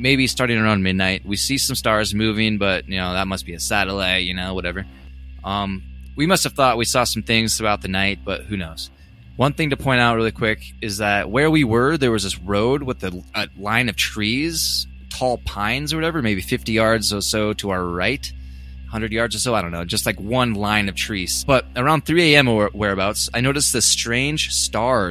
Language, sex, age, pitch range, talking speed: English, male, 20-39, 85-120 Hz, 220 wpm